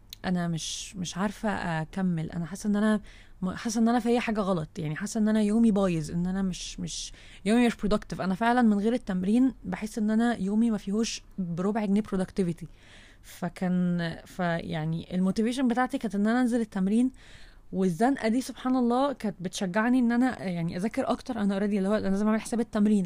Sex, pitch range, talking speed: female, 185-230 Hz, 185 wpm